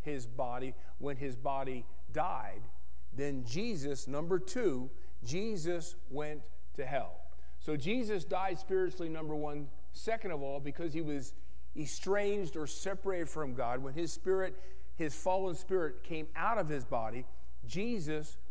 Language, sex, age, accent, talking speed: English, male, 50-69, American, 140 wpm